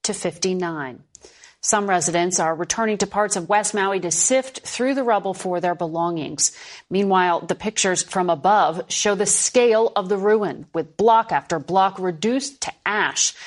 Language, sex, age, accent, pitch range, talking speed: English, female, 40-59, American, 175-210 Hz, 165 wpm